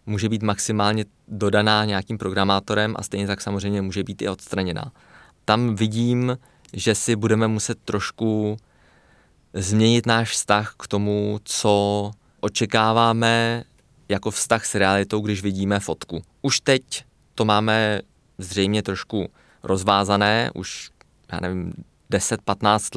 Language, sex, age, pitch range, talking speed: Czech, male, 20-39, 95-110 Hz, 120 wpm